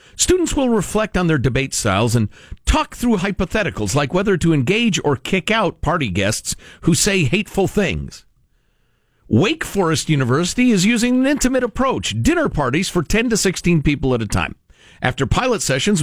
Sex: male